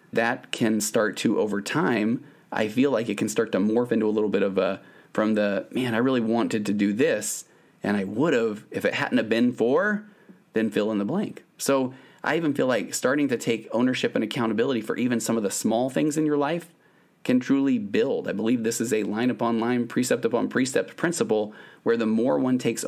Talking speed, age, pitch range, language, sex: 220 wpm, 30-49, 110-130 Hz, English, male